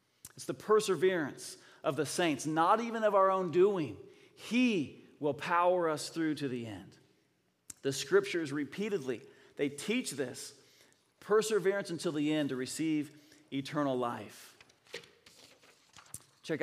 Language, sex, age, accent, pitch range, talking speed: English, male, 40-59, American, 140-170 Hz, 125 wpm